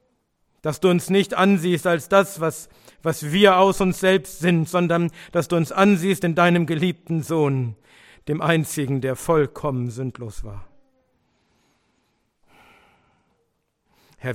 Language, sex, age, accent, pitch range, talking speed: German, male, 50-69, German, 130-170 Hz, 125 wpm